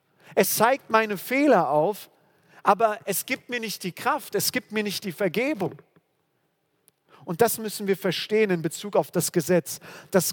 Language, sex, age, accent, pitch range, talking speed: German, male, 40-59, German, 160-195 Hz, 170 wpm